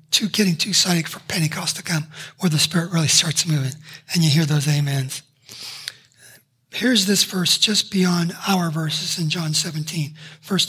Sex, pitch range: male, 155-215 Hz